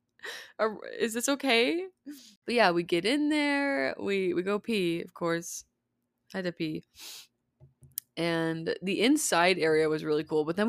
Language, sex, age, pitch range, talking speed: English, female, 20-39, 170-225 Hz, 155 wpm